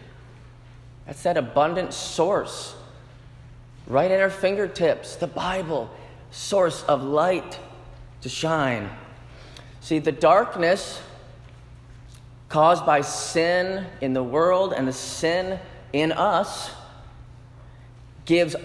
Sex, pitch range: male, 115-140 Hz